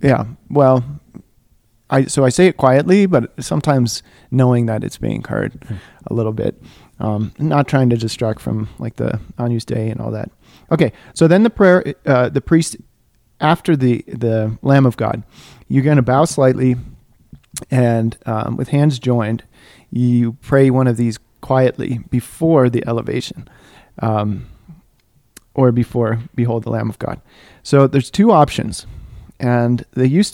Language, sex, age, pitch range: English, male, 30-49, 115-140 Hz